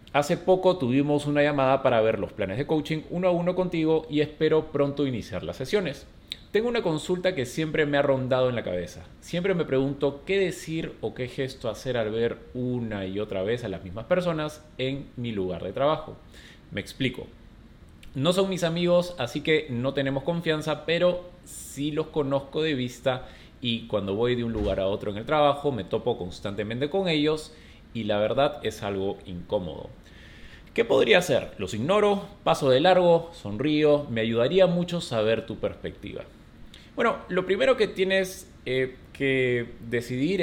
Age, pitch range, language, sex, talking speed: 30-49, 110-160 Hz, Spanish, male, 175 wpm